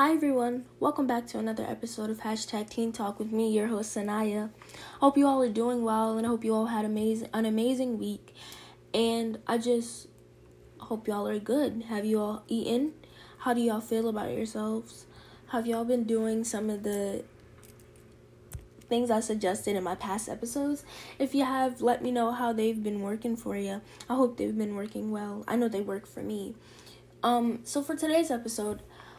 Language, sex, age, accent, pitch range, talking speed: English, female, 10-29, American, 180-235 Hz, 195 wpm